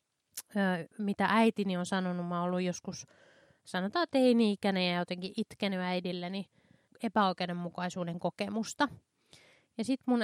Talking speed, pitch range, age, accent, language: 130 wpm, 185-225 Hz, 20-39, native, Finnish